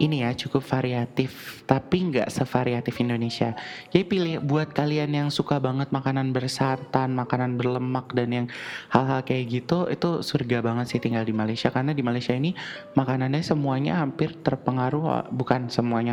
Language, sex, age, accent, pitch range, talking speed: Indonesian, male, 20-39, native, 130-160 Hz, 155 wpm